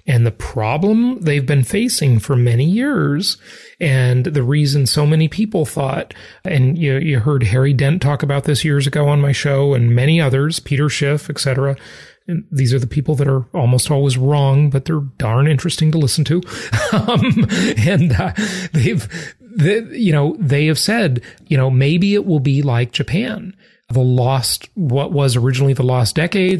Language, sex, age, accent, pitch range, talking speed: English, male, 30-49, American, 135-175 Hz, 170 wpm